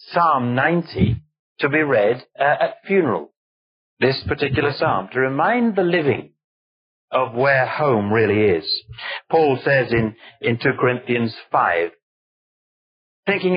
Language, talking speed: English, 125 wpm